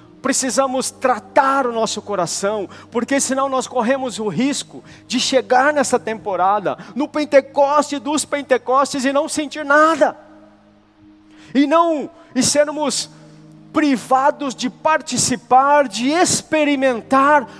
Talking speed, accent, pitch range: 105 wpm, Brazilian, 185-275 Hz